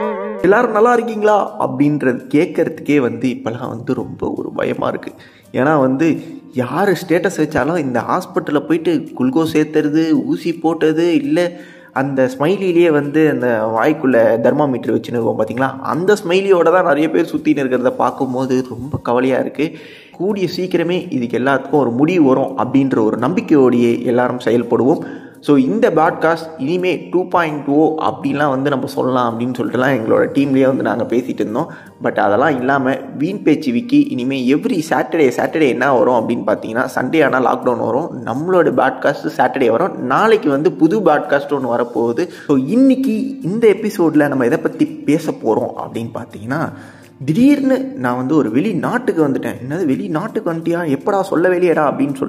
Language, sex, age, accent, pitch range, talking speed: Tamil, male, 20-39, native, 130-180 Hz, 140 wpm